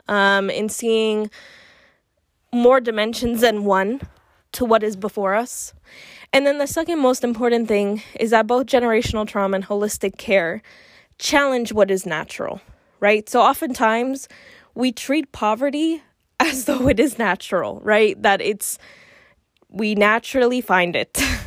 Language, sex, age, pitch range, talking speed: English, female, 20-39, 200-245 Hz, 135 wpm